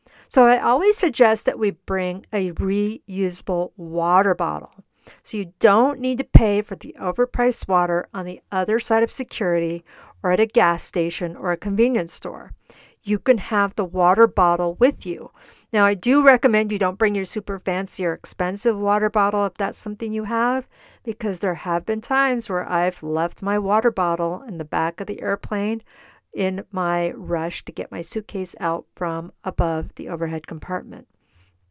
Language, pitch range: English, 175-225 Hz